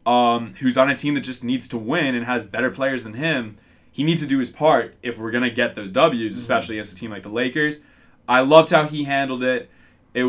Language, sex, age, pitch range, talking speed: English, male, 20-39, 110-130 Hz, 250 wpm